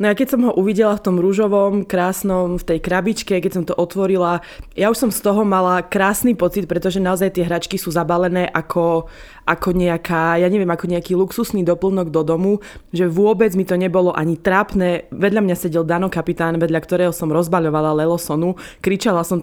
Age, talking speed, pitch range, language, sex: 20-39, 185 wpm, 170-200 Hz, Slovak, female